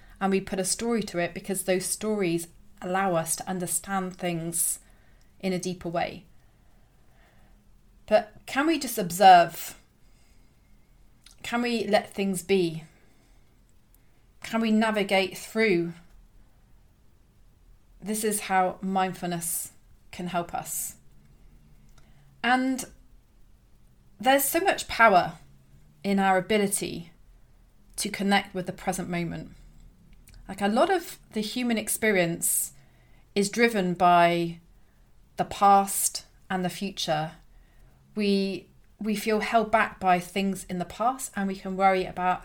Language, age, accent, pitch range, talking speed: English, 30-49, British, 175-205 Hz, 120 wpm